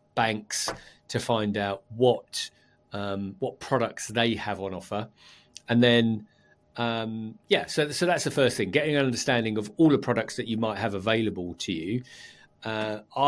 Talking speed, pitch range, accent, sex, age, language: 165 wpm, 100-120 Hz, British, male, 40-59, English